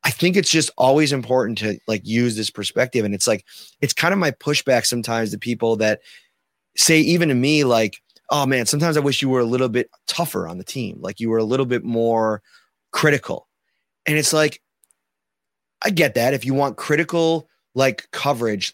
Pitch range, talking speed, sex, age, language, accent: 115-155 Hz, 200 wpm, male, 30-49, English, American